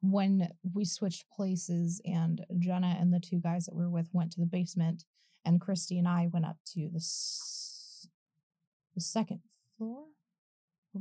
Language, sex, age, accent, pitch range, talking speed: English, female, 20-39, American, 175-205 Hz, 170 wpm